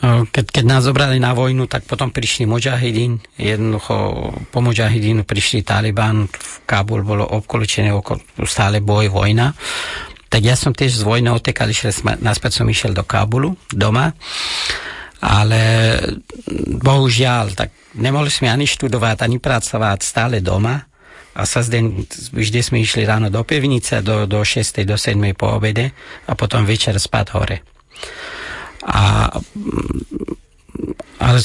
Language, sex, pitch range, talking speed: Slovak, male, 105-125 Hz, 125 wpm